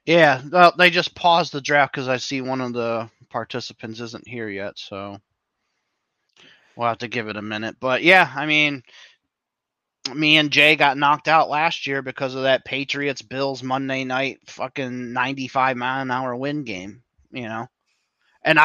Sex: male